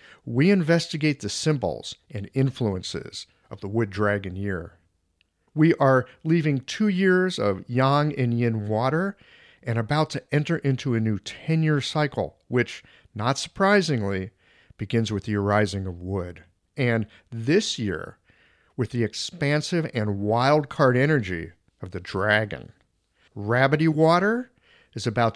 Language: English